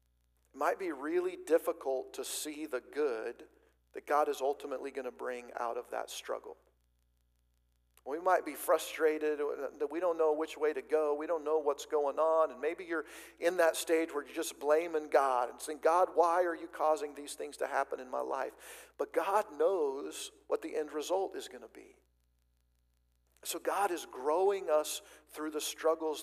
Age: 50-69